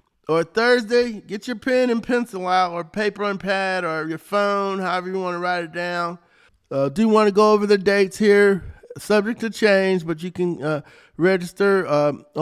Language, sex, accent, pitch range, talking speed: English, male, American, 180-220 Hz, 195 wpm